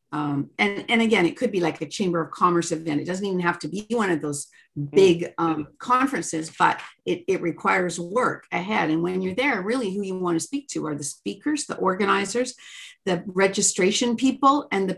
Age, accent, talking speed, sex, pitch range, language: 50-69, American, 210 wpm, female, 160-205 Hz, English